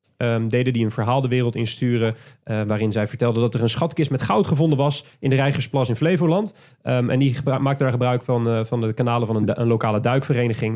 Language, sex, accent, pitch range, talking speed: Dutch, male, Dutch, 120-150 Hz, 240 wpm